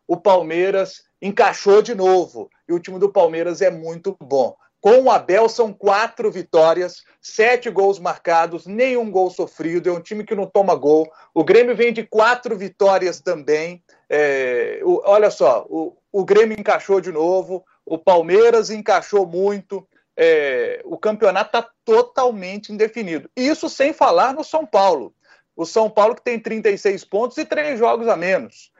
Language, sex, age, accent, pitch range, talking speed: Portuguese, male, 40-59, Brazilian, 185-250 Hz, 155 wpm